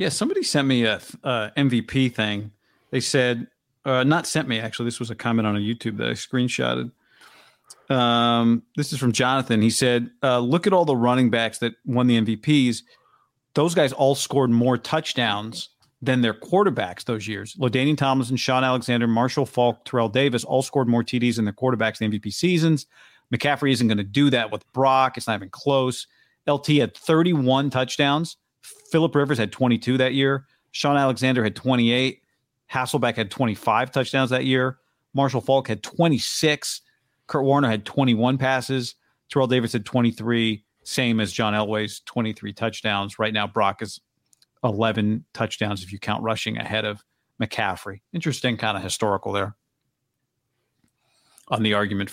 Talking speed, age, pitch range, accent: 165 wpm, 40-59, 110-135 Hz, American